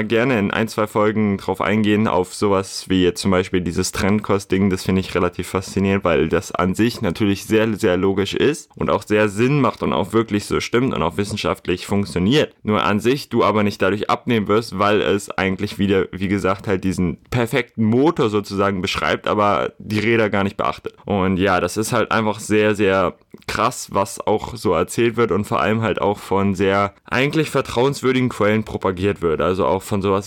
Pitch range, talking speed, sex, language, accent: 95-110 Hz, 200 wpm, male, German, German